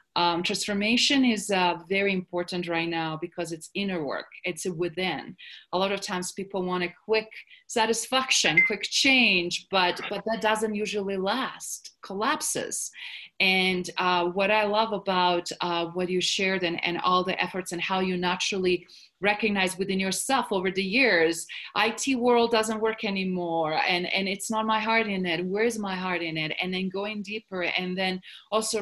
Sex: female